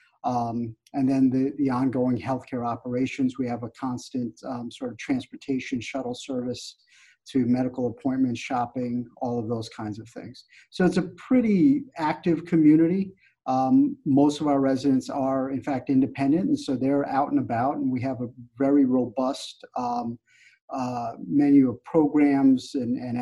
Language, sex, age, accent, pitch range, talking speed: English, male, 50-69, American, 125-155 Hz, 160 wpm